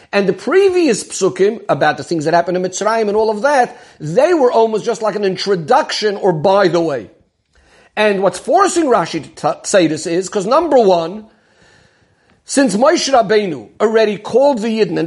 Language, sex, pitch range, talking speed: English, male, 185-240 Hz, 185 wpm